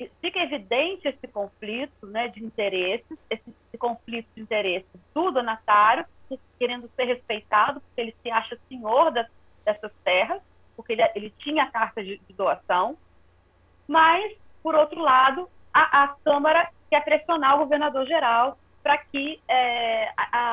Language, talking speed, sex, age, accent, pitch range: Portuguese, 140 wpm, female, 30-49, Brazilian, 230-305 Hz